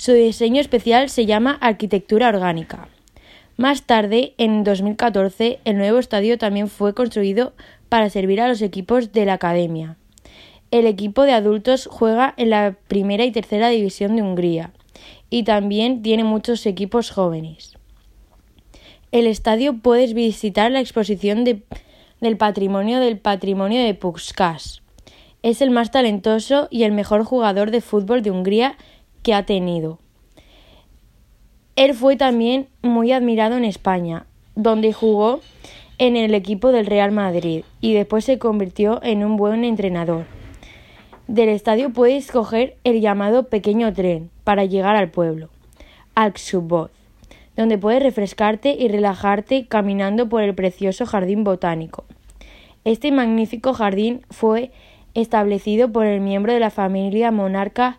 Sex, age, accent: female, 20-39, Spanish